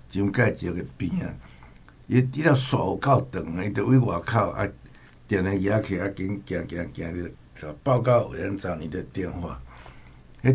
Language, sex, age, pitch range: Chinese, male, 60-79, 85-120 Hz